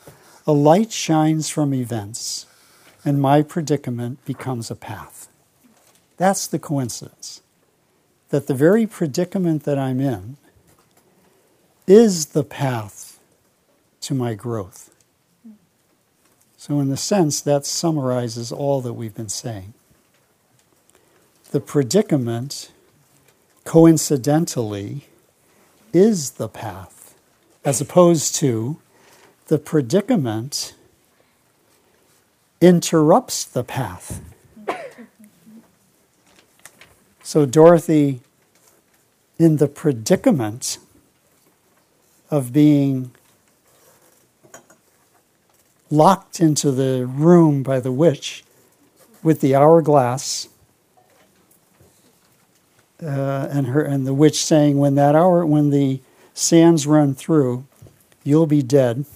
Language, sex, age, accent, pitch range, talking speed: English, male, 60-79, American, 130-165 Hz, 90 wpm